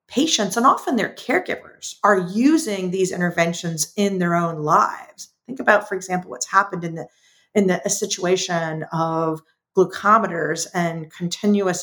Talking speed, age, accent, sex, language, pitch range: 145 wpm, 40-59, American, female, English, 160-205 Hz